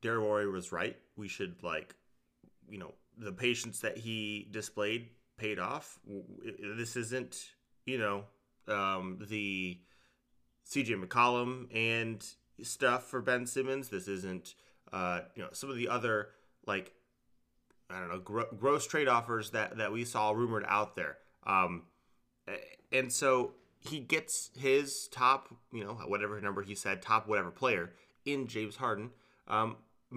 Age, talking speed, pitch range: 30-49, 145 wpm, 105-125 Hz